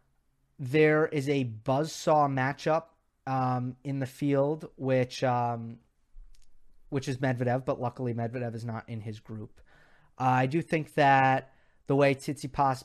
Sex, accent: male, American